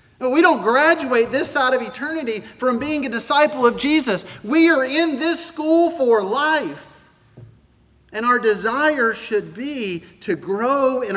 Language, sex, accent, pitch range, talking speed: English, male, American, 180-255 Hz, 150 wpm